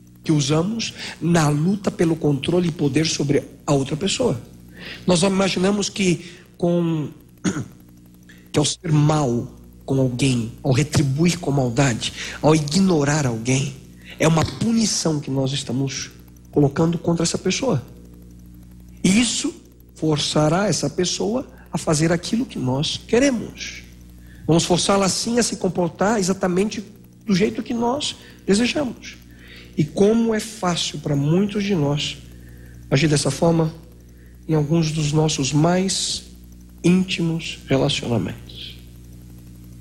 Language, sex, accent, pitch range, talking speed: Portuguese, male, Brazilian, 110-175 Hz, 120 wpm